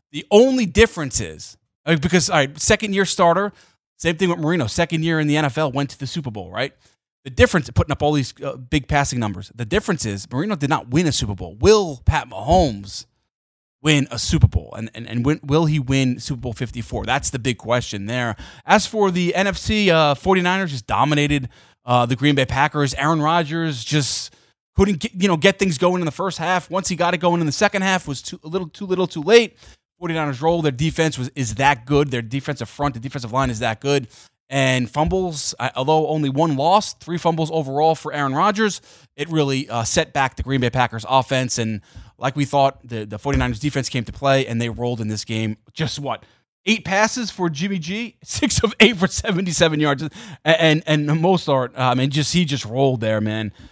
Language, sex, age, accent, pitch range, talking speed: English, male, 20-39, American, 125-170 Hz, 215 wpm